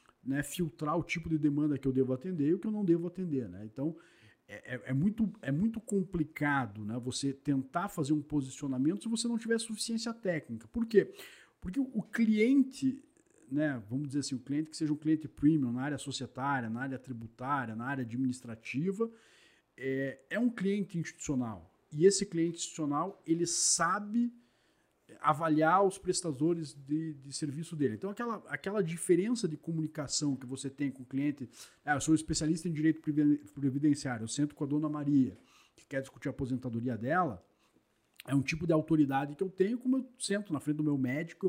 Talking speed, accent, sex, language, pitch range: 185 wpm, Brazilian, male, Portuguese, 135-185 Hz